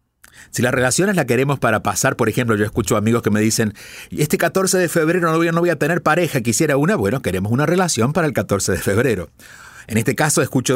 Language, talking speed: Spanish, 220 wpm